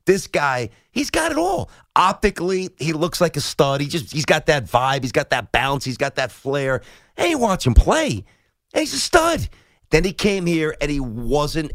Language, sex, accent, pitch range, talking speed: English, male, American, 135-190 Hz, 205 wpm